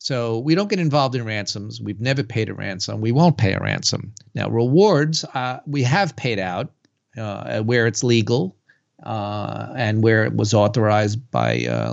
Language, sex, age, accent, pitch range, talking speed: English, male, 40-59, American, 110-145 Hz, 180 wpm